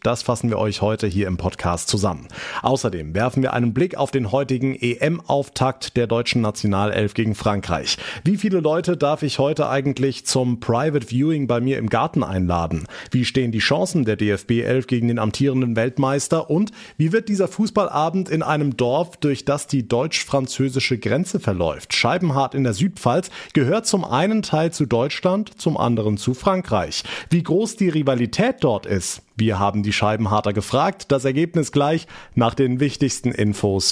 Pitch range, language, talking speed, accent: 115-165 Hz, German, 170 wpm, German